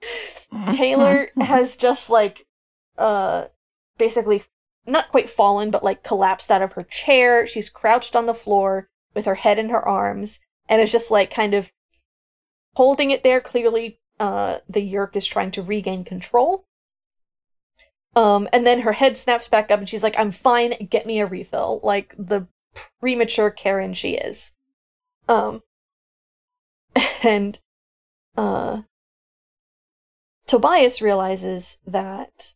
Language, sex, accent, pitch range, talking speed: English, female, American, 185-230 Hz, 135 wpm